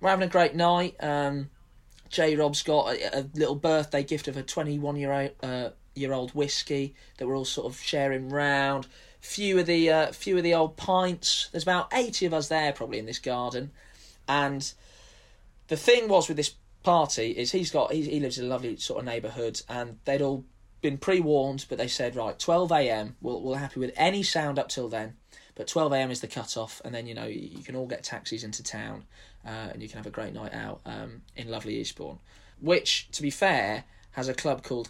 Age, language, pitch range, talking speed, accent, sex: 20-39, English, 115-150 Hz, 225 wpm, British, male